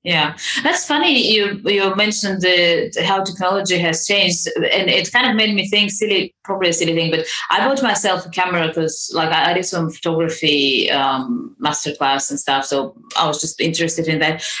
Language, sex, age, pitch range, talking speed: English, female, 30-49, 160-195 Hz, 190 wpm